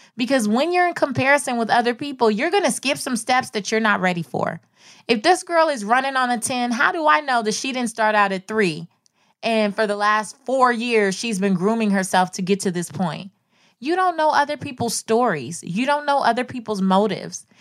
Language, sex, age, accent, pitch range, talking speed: English, female, 20-39, American, 180-235 Hz, 220 wpm